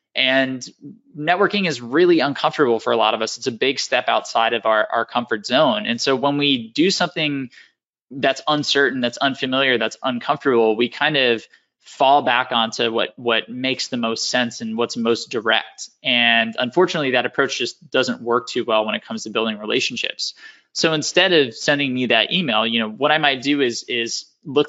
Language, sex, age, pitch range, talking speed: English, male, 20-39, 115-135 Hz, 190 wpm